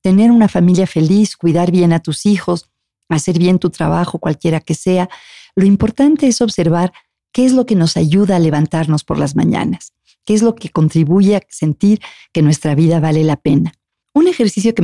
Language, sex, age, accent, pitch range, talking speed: Spanish, female, 40-59, Mexican, 160-205 Hz, 190 wpm